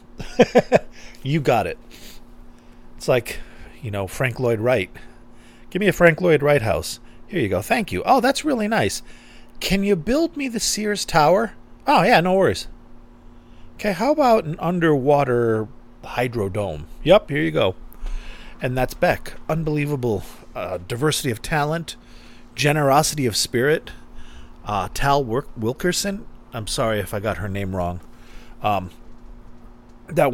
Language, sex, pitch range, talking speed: English, male, 110-145 Hz, 140 wpm